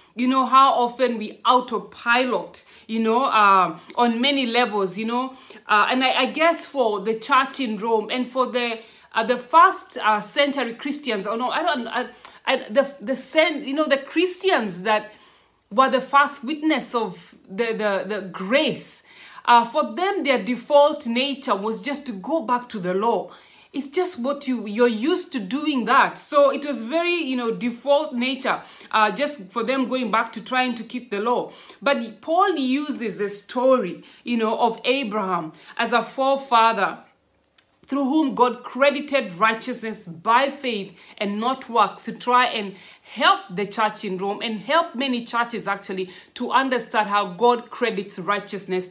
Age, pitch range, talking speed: 30-49, 215-275 Hz, 175 wpm